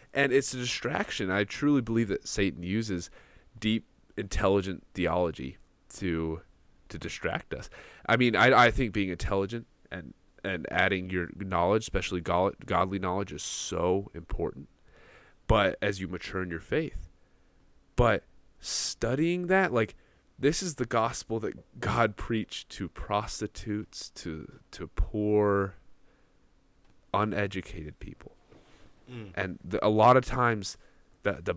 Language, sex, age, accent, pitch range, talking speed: English, male, 20-39, American, 90-115 Hz, 130 wpm